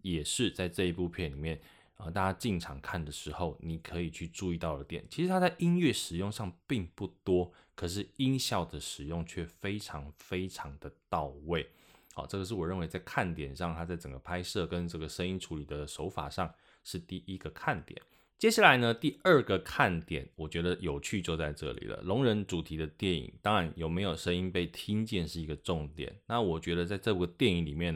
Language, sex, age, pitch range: Chinese, male, 20-39, 80-95 Hz